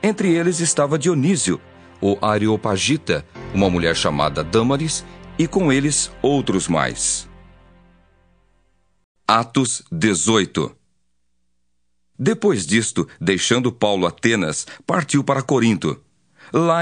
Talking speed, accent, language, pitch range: 95 wpm, Brazilian, Portuguese, 95-150 Hz